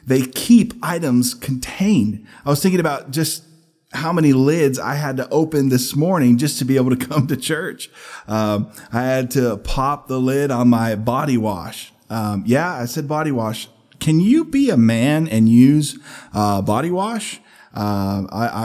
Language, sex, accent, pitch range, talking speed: English, male, American, 110-145 Hz, 175 wpm